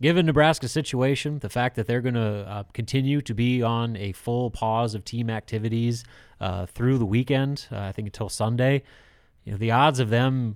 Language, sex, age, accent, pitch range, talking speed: English, male, 30-49, American, 105-130 Hz, 200 wpm